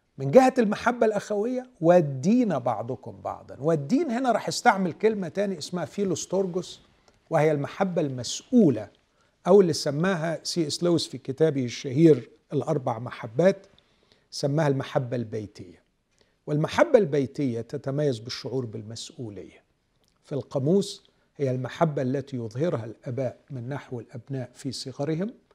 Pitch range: 125-175 Hz